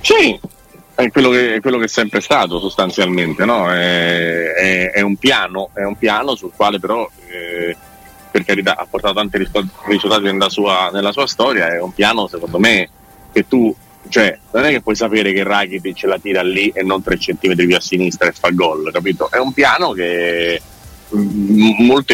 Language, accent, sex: Italian, native, male